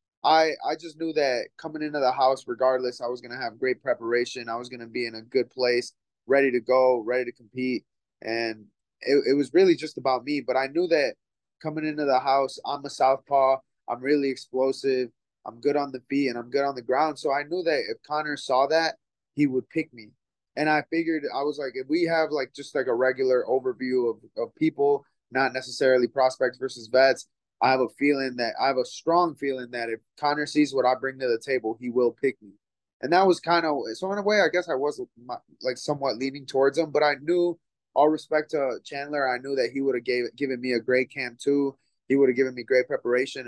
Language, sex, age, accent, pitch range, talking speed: English, male, 20-39, American, 120-145 Hz, 235 wpm